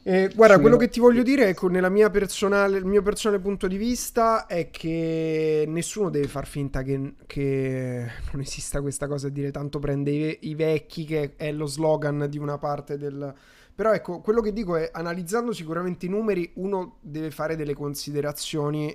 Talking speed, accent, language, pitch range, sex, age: 175 wpm, native, Italian, 145-175 Hz, male, 20-39